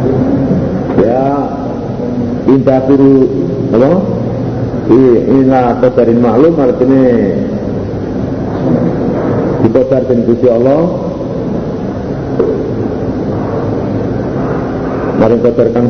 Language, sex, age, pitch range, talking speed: Indonesian, male, 50-69, 115-145 Hz, 65 wpm